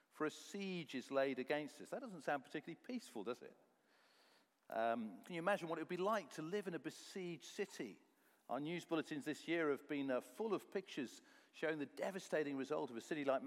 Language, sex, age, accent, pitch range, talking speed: English, male, 50-69, British, 140-200 Hz, 215 wpm